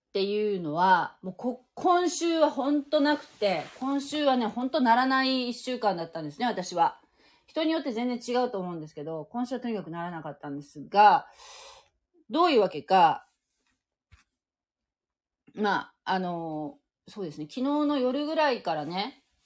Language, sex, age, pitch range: Japanese, female, 30-49, 165-250 Hz